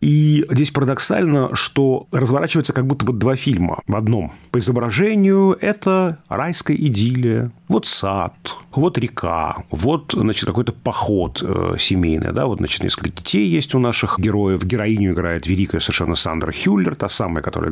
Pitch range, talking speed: 100-135 Hz, 150 wpm